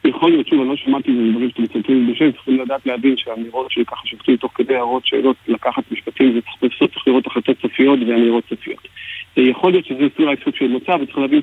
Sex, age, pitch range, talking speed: male, 40-59, 120-140 Hz, 210 wpm